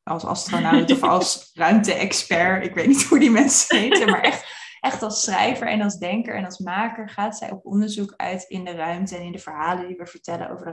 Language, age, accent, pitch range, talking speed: Dutch, 20-39, Dutch, 170-200 Hz, 225 wpm